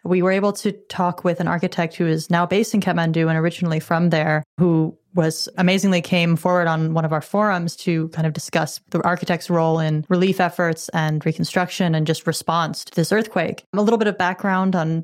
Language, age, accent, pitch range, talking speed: English, 30-49, American, 160-185 Hz, 210 wpm